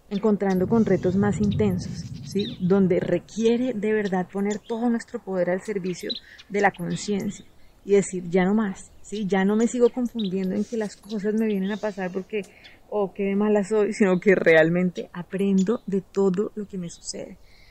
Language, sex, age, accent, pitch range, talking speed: Spanish, female, 30-49, Colombian, 190-220 Hz, 180 wpm